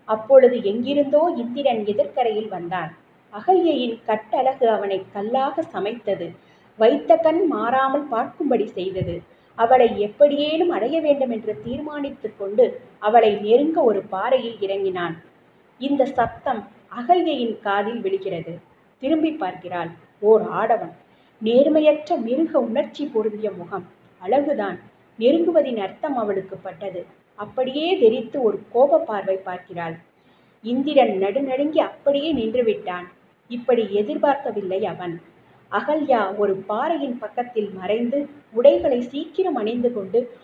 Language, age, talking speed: Tamil, 30-49, 95 wpm